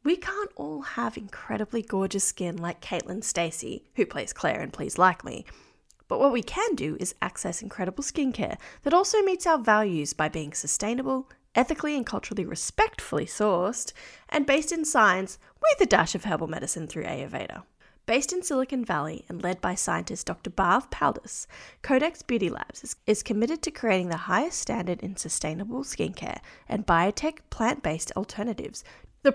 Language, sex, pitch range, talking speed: English, female, 175-275 Hz, 165 wpm